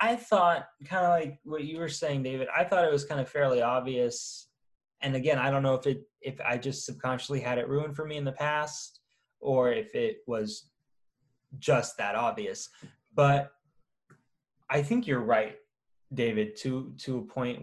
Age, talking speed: 10-29, 185 wpm